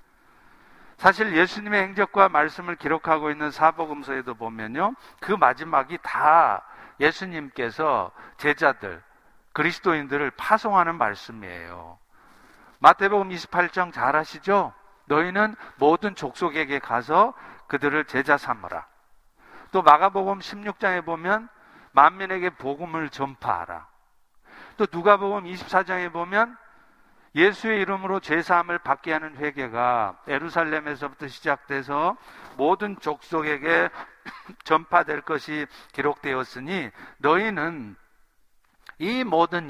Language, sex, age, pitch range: Korean, male, 50-69, 140-190 Hz